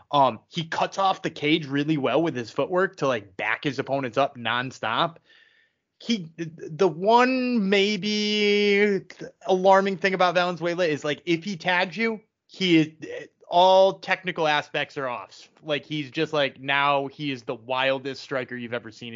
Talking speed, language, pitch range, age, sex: 160 wpm, English, 140-205 Hz, 20-39, male